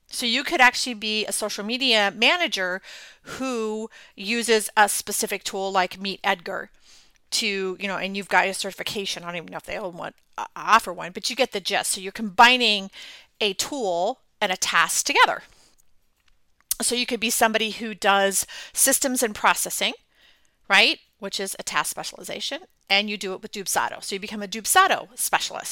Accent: American